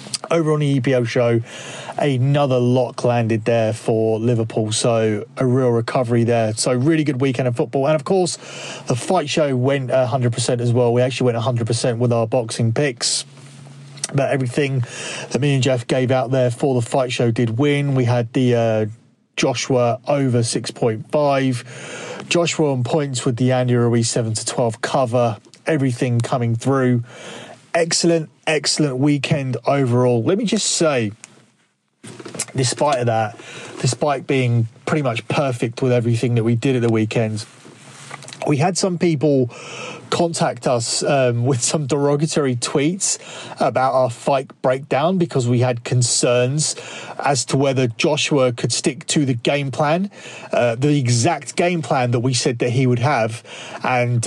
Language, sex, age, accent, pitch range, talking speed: English, male, 30-49, British, 120-150 Hz, 155 wpm